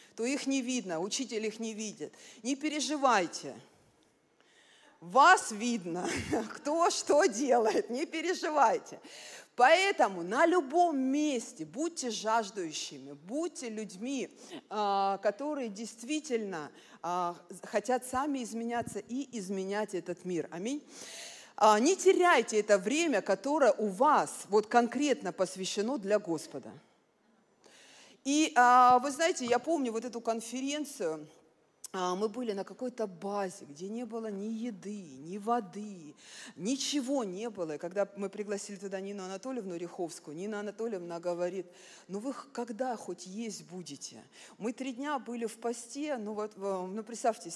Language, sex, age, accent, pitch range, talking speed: Russian, female, 50-69, native, 195-270 Hz, 120 wpm